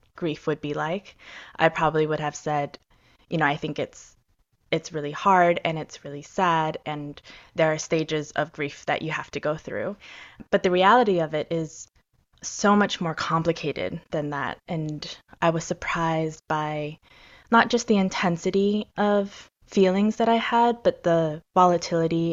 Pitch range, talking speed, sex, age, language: 155-180 Hz, 165 wpm, female, 20-39, English